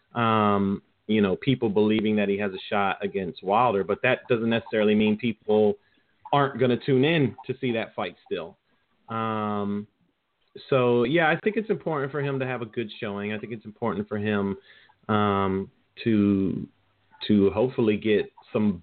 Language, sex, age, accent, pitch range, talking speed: English, male, 30-49, American, 105-130 Hz, 170 wpm